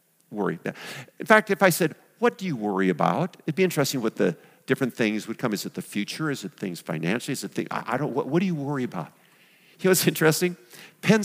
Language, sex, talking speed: English, male, 240 wpm